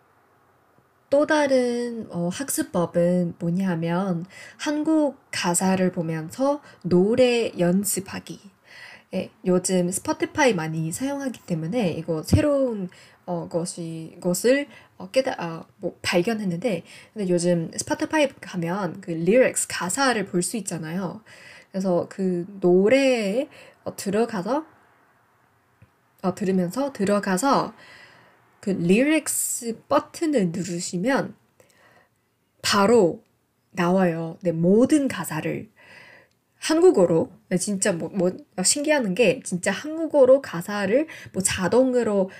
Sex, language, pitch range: female, Korean, 175-265 Hz